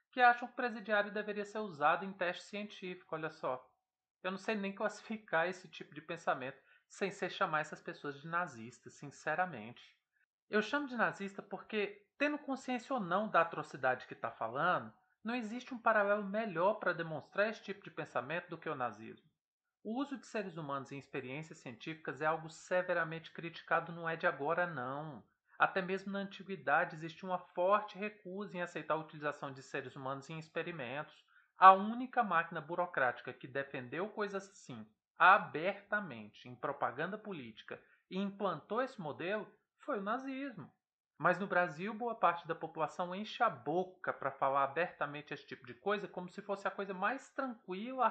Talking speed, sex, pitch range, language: 170 wpm, male, 160-210 Hz, Portuguese